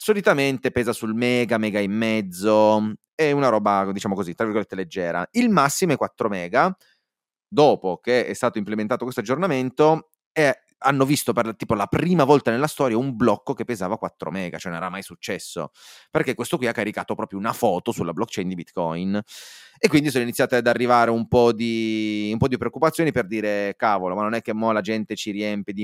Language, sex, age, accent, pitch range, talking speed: Italian, male, 30-49, native, 105-130 Hz, 200 wpm